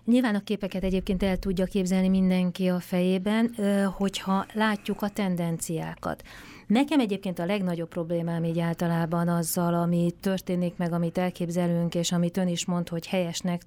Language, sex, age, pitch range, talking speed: Hungarian, female, 30-49, 175-195 Hz, 150 wpm